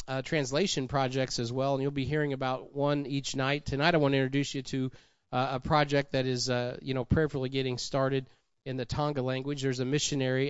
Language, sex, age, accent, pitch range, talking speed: English, male, 40-59, American, 125-145 Hz, 215 wpm